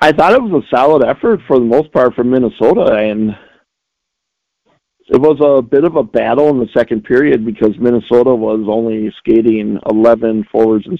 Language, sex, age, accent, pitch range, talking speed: English, male, 50-69, American, 110-130 Hz, 180 wpm